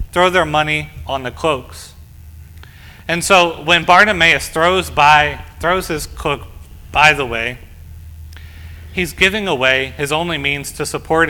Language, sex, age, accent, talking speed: English, male, 30-49, American, 140 wpm